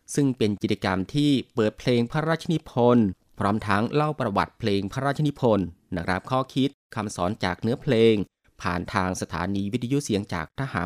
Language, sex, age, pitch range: Thai, male, 20-39, 100-130 Hz